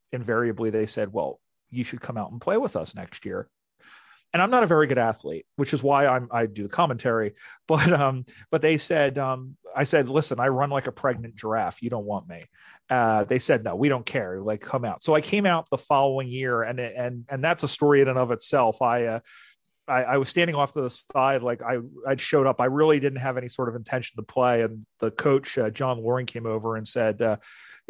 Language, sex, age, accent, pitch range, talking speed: English, male, 40-59, American, 115-145 Hz, 235 wpm